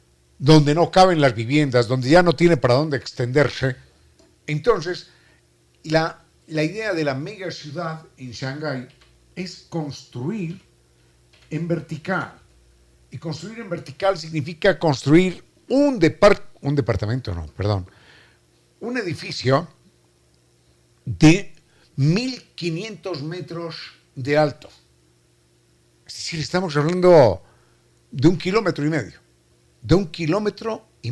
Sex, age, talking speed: male, 50-69, 115 wpm